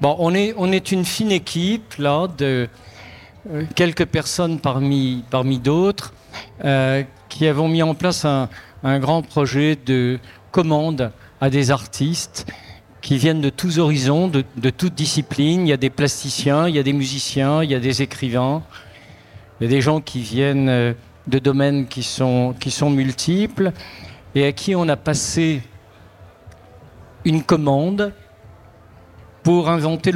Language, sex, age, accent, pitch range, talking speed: French, male, 50-69, French, 120-155 Hz, 145 wpm